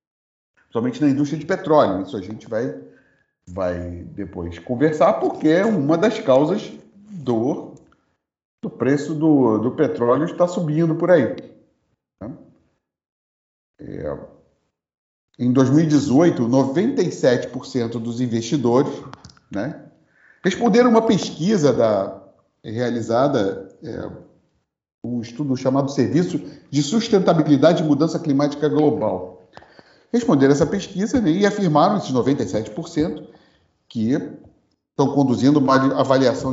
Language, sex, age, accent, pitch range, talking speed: Portuguese, male, 40-59, Brazilian, 125-165 Hz, 105 wpm